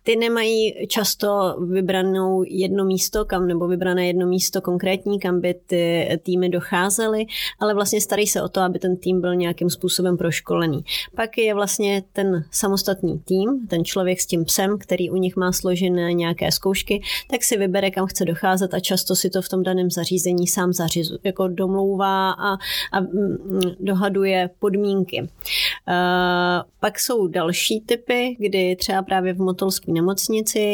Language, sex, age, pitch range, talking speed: Czech, female, 30-49, 175-195 Hz, 150 wpm